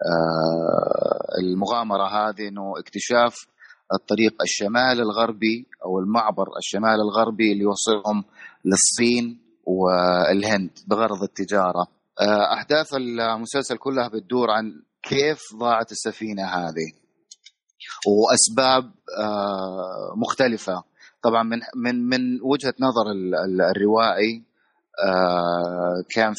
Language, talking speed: Arabic, 80 wpm